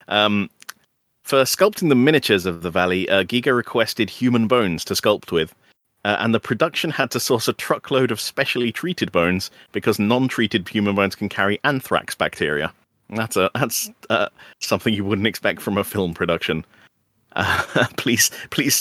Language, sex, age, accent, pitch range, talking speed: English, male, 30-49, British, 90-120 Hz, 165 wpm